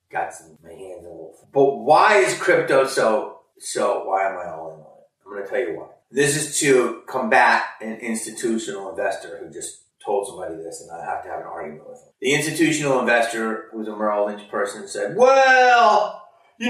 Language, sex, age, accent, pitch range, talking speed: English, male, 30-49, American, 145-230 Hz, 200 wpm